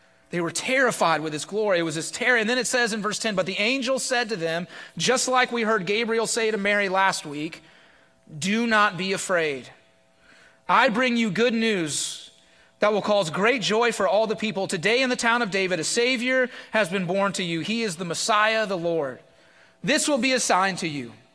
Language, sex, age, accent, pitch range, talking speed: English, male, 30-49, American, 170-235 Hz, 215 wpm